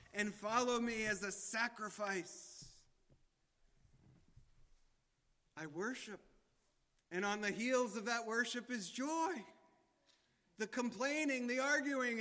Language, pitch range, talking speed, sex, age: English, 145-205 Hz, 105 wpm, male, 30-49